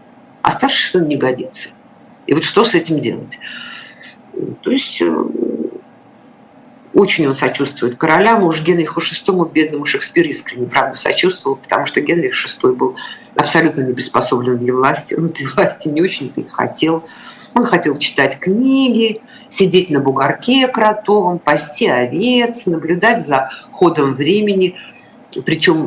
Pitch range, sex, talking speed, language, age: 145-235 Hz, female, 130 wpm, Russian, 50-69